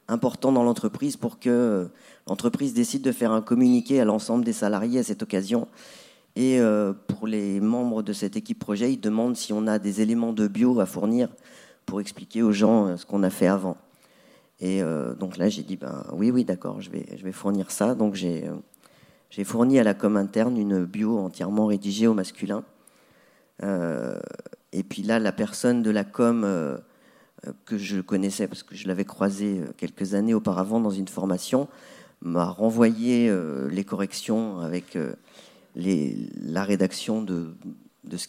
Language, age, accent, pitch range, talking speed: French, 40-59, French, 100-120 Hz, 170 wpm